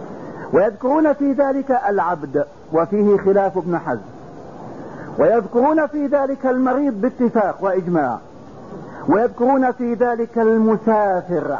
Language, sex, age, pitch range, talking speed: English, male, 50-69, 200-260 Hz, 95 wpm